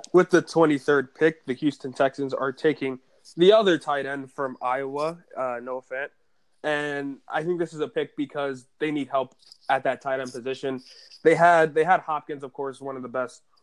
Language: English